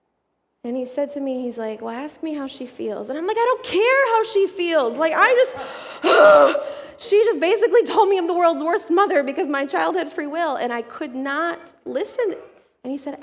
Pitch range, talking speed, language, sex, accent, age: 210-315 Hz, 220 wpm, English, female, American, 20-39